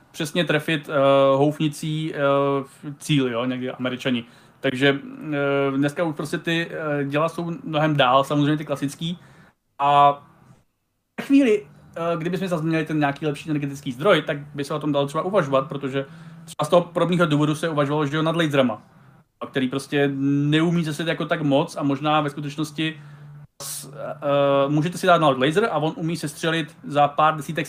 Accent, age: native, 30-49